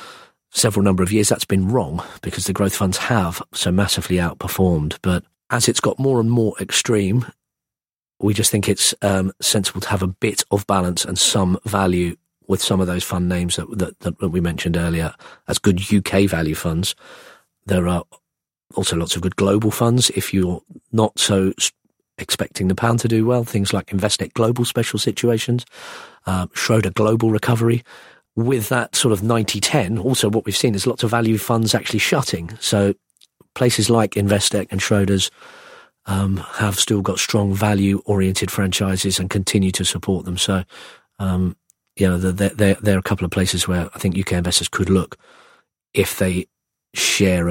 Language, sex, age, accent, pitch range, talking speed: English, male, 40-59, British, 90-110 Hz, 175 wpm